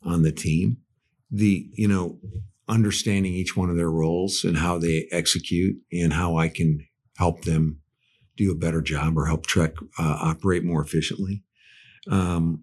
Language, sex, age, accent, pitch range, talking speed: English, male, 50-69, American, 75-100 Hz, 160 wpm